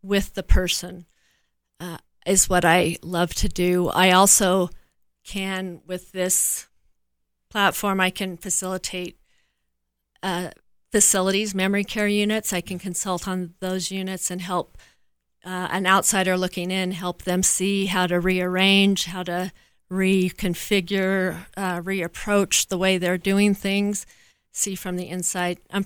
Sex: female